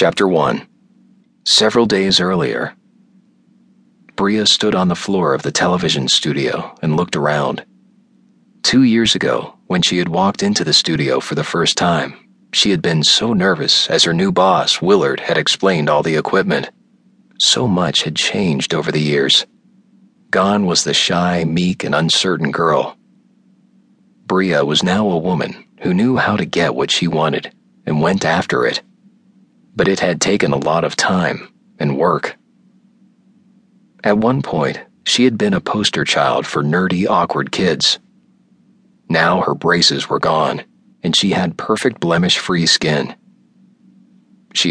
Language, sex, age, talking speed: English, male, 40-59, 150 wpm